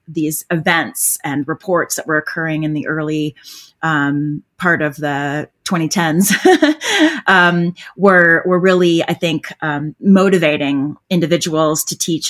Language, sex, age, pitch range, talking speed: English, female, 30-49, 150-175 Hz, 125 wpm